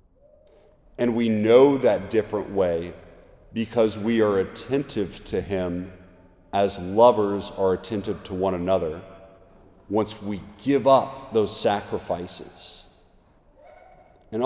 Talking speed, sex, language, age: 110 wpm, male, English, 40-59